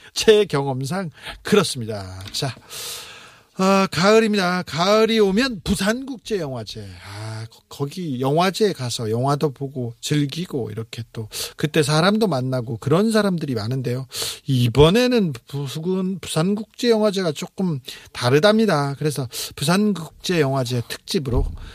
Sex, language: male, Korean